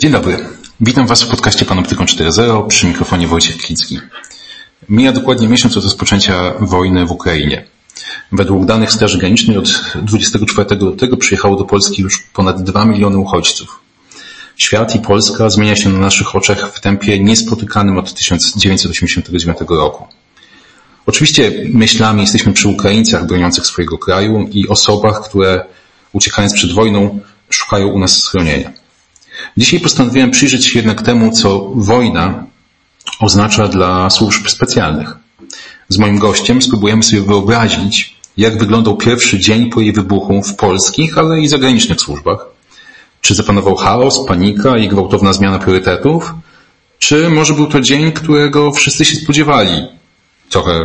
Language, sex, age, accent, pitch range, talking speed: Polish, male, 40-59, native, 95-115 Hz, 140 wpm